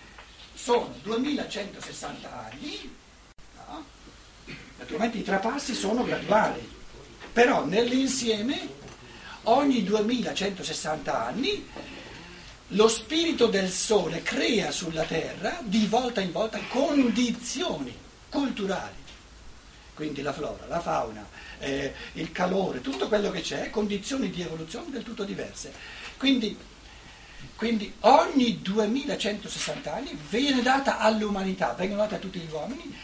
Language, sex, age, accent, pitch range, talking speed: Italian, male, 60-79, native, 180-245 Hz, 105 wpm